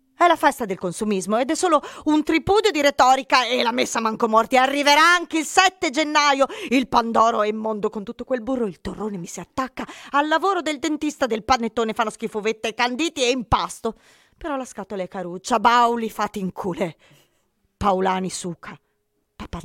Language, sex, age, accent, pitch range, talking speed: Italian, female, 30-49, native, 190-280 Hz, 175 wpm